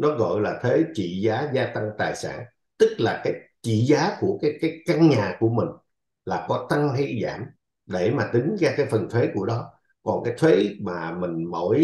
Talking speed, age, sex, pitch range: 215 wpm, 50-69, male, 115-170 Hz